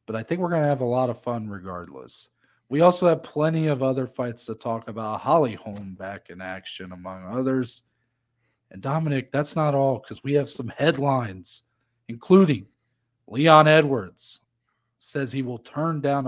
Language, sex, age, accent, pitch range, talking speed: English, male, 40-59, American, 110-135 Hz, 175 wpm